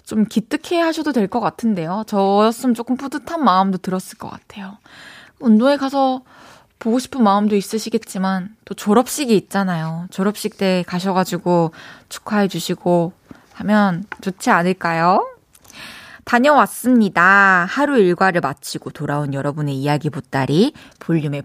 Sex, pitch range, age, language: female, 165-235 Hz, 20-39, Korean